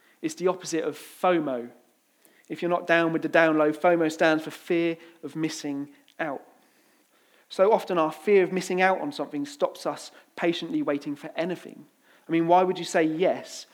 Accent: British